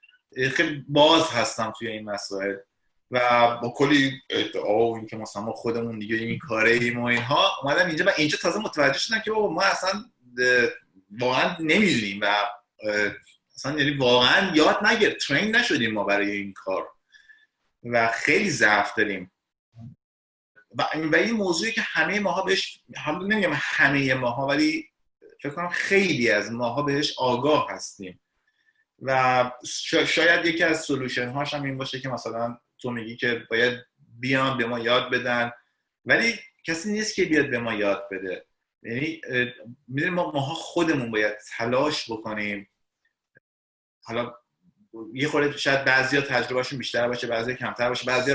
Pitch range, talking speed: 115-150 Hz, 140 wpm